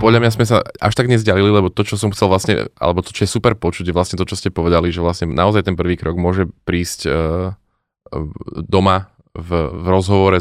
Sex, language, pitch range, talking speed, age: male, Slovak, 85-100 Hz, 220 wpm, 20-39